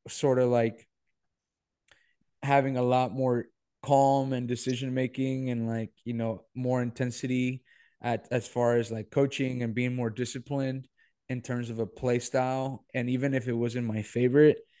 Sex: male